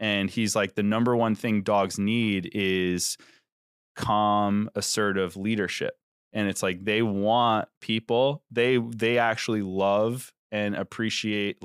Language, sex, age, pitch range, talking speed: English, male, 20-39, 100-115 Hz, 130 wpm